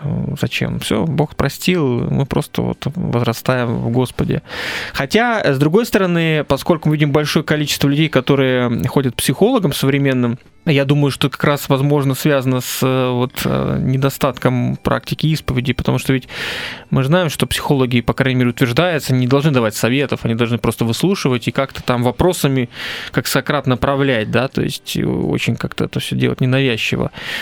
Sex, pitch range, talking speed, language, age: male, 120-150 Hz, 160 wpm, Russian, 20-39